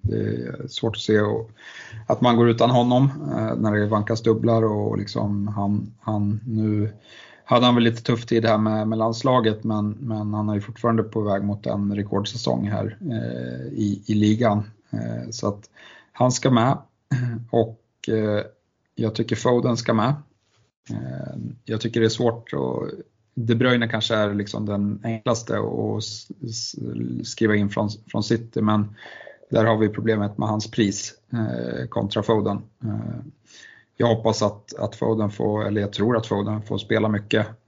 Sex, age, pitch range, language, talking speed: male, 30-49, 105-115 Hz, Swedish, 160 wpm